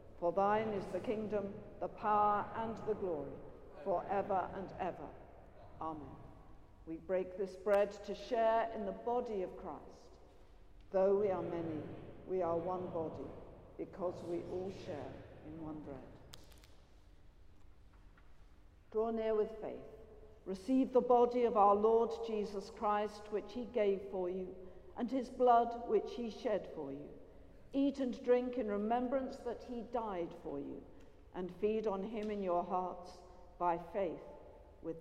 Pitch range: 175-220 Hz